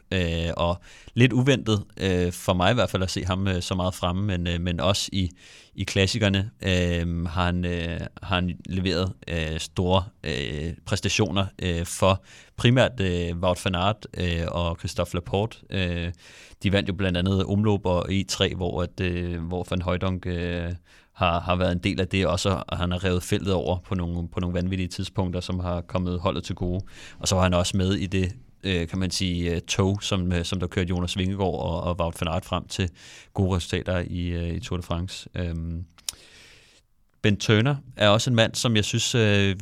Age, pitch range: 30-49, 90-100 Hz